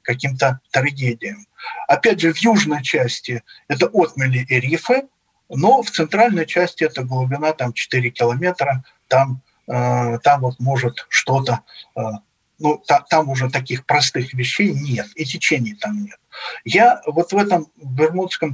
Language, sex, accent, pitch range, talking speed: Russian, male, native, 130-180 Hz, 140 wpm